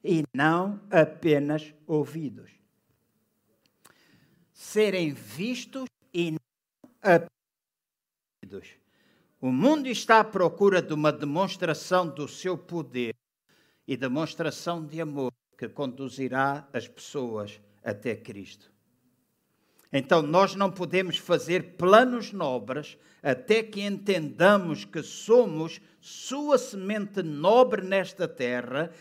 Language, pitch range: Portuguese, 135-180 Hz